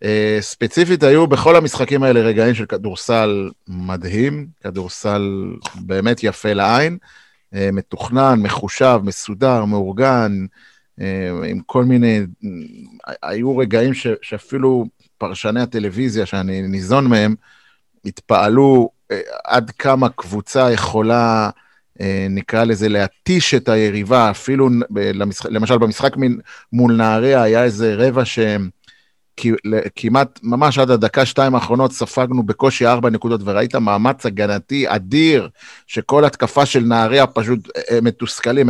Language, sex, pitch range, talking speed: Hebrew, male, 105-135 Hz, 115 wpm